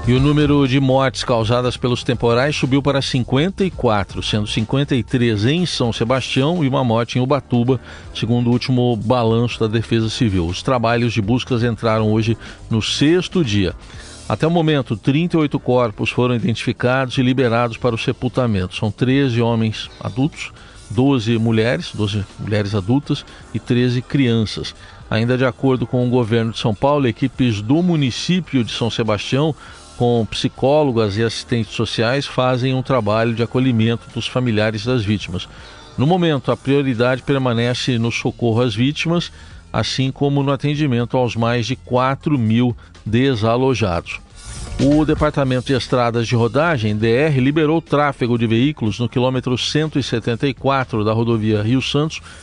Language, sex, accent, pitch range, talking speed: Portuguese, male, Brazilian, 115-135 Hz, 145 wpm